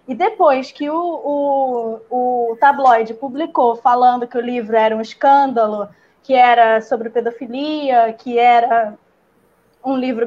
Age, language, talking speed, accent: 10-29, Portuguese, 135 wpm, Brazilian